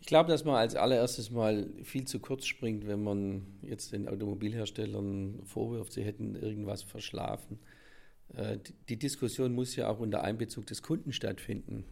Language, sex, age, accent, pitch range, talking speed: German, male, 50-69, German, 105-125 Hz, 155 wpm